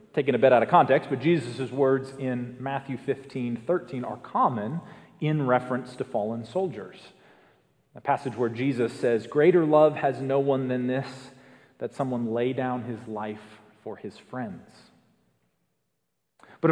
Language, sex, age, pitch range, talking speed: English, male, 40-59, 130-180 Hz, 150 wpm